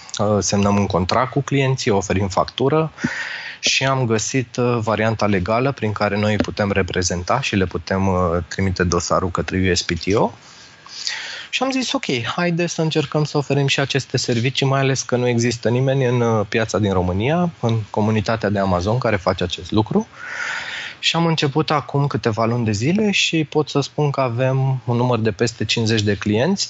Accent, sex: native, male